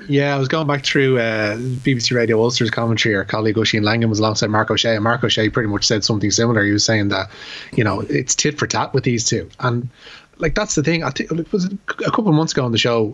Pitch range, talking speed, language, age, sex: 110-135 Hz, 260 wpm, English, 20-39, male